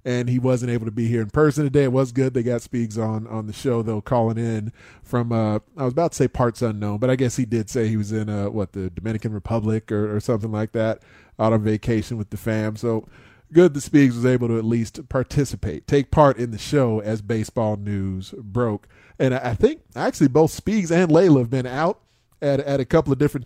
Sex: male